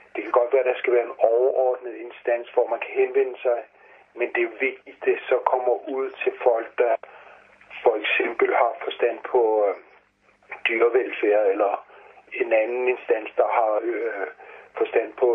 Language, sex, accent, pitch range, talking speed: Danish, male, native, 345-435 Hz, 160 wpm